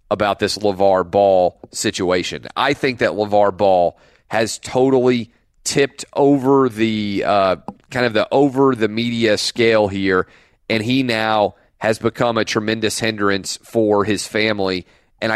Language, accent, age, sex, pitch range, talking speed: English, American, 30-49, male, 100-115 Hz, 140 wpm